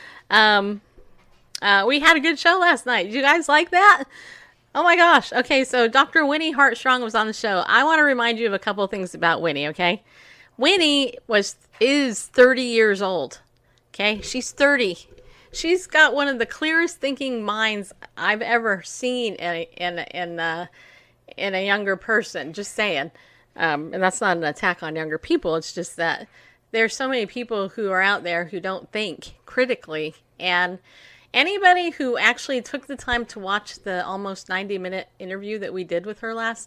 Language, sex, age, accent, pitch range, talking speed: English, female, 30-49, American, 185-260 Hz, 185 wpm